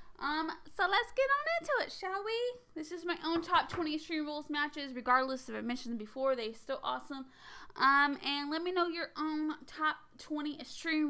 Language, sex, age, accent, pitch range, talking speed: English, female, 10-29, American, 250-320 Hz, 200 wpm